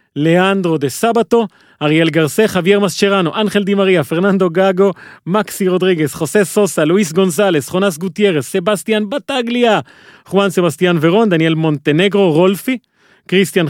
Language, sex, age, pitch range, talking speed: Hebrew, male, 30-49, 160-200 Hz, 125 wpm